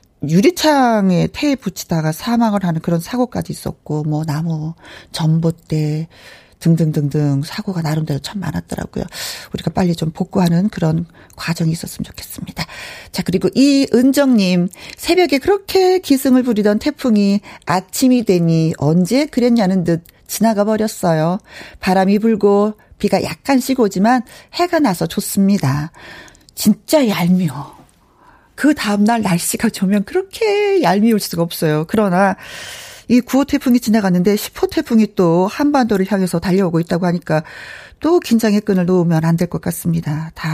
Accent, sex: native, female